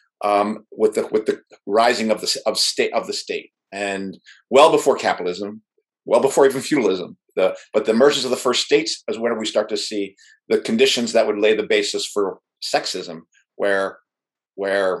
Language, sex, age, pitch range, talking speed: English, male, 50-69, 105-130 Hz, 185 wpm